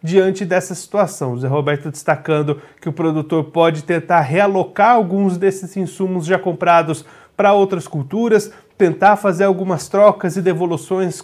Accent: Brazilian